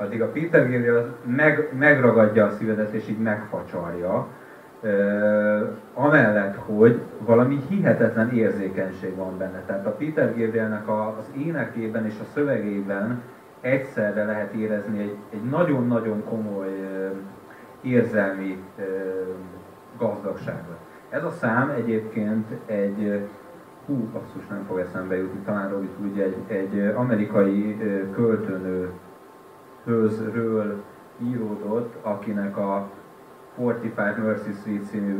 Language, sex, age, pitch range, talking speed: Hungarian, male, 30-49, 100-115 Hz, 105 wpm